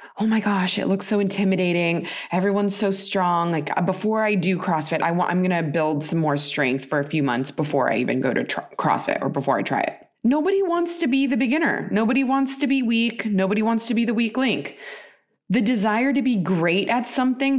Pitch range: 180-245 Hz